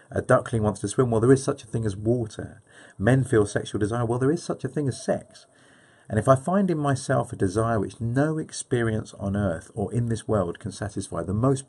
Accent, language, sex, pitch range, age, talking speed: British, English, male, 95-120 Hz, 40-59, 235 wpm